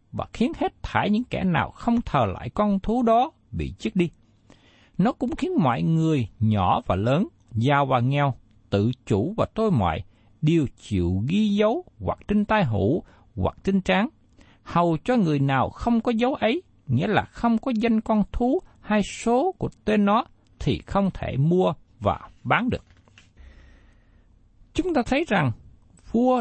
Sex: male